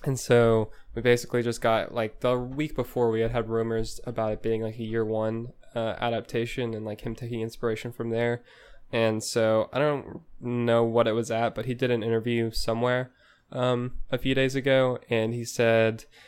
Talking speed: 195 wpm